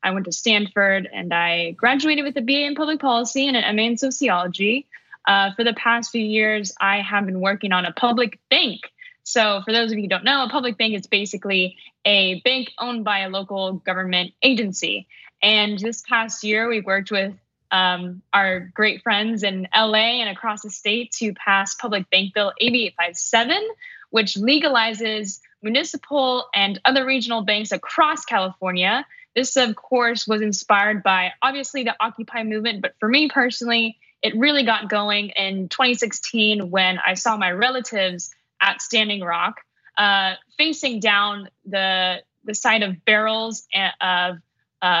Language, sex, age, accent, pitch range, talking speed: English, female, 10-29, American, 195-240 Hz, 165 wpm